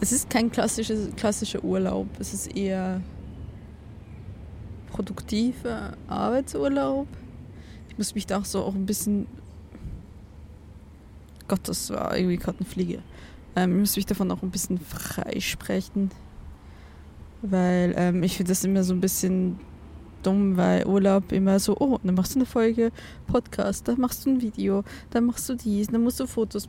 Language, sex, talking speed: German, female, 150 wpm